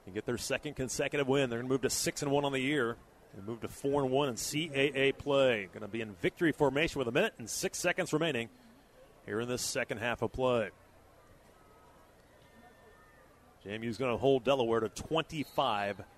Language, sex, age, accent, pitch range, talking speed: English, male, 30-49, American, 115-155 Hz, 180 wpm